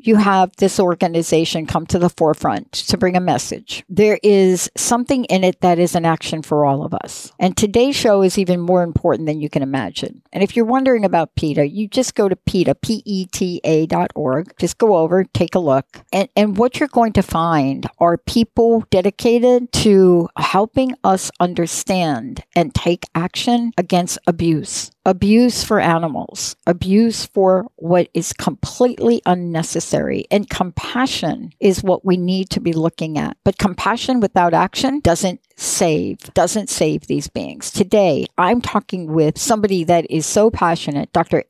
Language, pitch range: English, 170-215 Hz